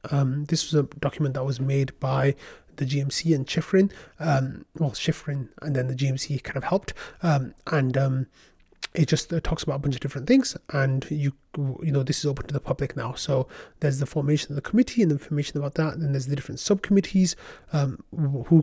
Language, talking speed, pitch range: English, 215 wpm, 135-160 Hz